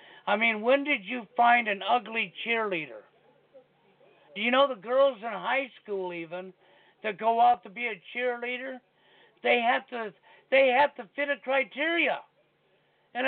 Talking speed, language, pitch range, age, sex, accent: 160 wpm, English, 220-265 Hz, 60-79, male, American